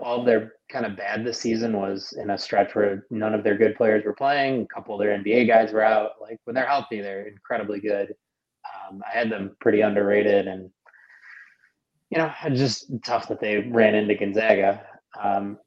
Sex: male